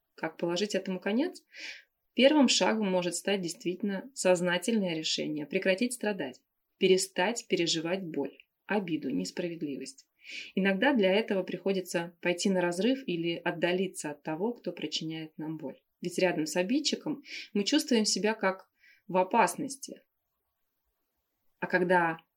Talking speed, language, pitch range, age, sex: 120 wpm, Russian, 170-215 Hz, 20-39, female